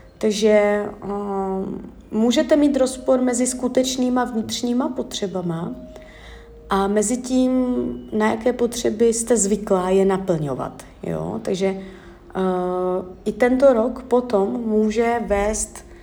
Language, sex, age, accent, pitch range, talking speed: Czech, female, 30-49, native, 190-225 Hz, 105 wpm